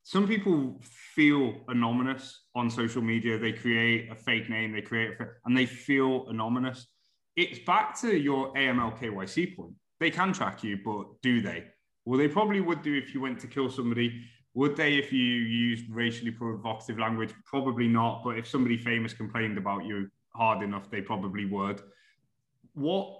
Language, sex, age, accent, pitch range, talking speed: English, male, 20-39, British, 110-130 Hz, 170 wpm